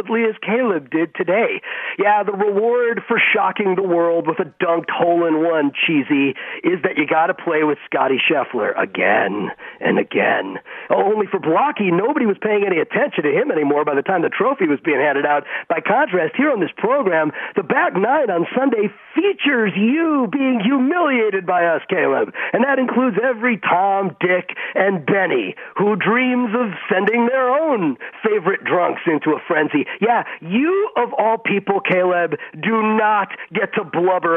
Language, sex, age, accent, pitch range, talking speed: English, male, 40-59, American, 170-255 Hz, 170 wpm